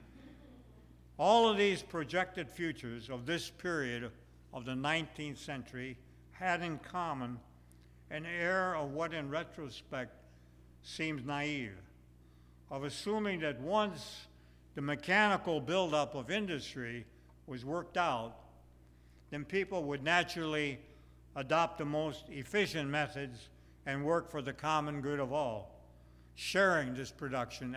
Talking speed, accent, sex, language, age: 120 wpm, American, male, English, 60-79